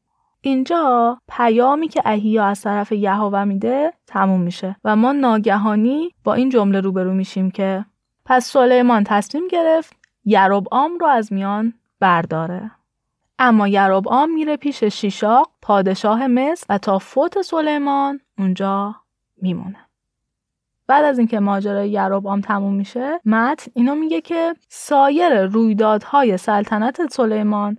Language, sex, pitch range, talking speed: Persian, female, 200-270 Hz, 125 wpm